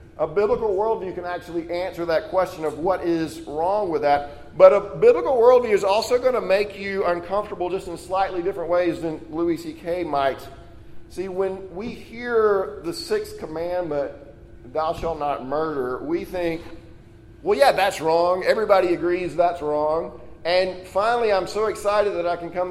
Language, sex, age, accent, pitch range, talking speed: English, male, 40-59, American, 145-185 Hz, 170 wpm